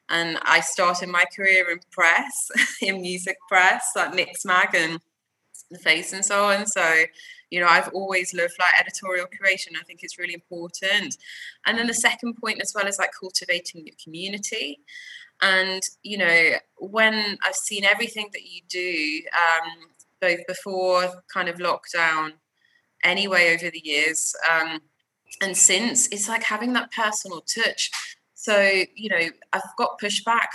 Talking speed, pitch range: 155 wpm, 175-215 Hz